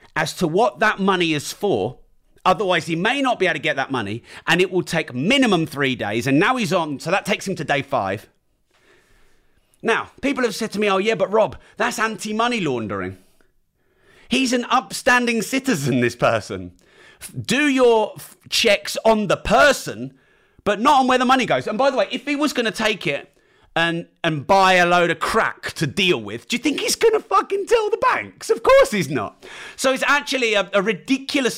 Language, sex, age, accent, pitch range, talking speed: English, male, 30-49, British, 170-265 Hz, 205 wpm